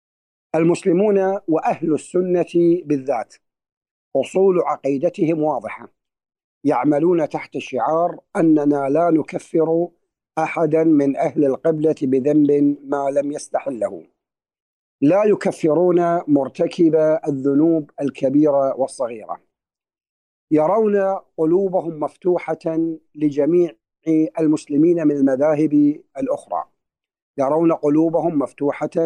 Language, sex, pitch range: Arabic, male, 145-170 Hz